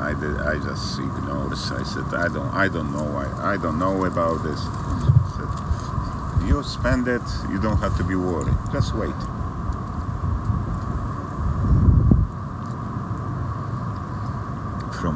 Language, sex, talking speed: English, male, 110 wpm